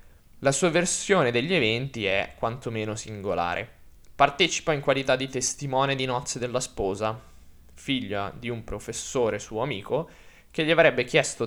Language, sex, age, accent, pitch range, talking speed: Italian, male, 20-39, native, 115-160 Hz, 140 wpm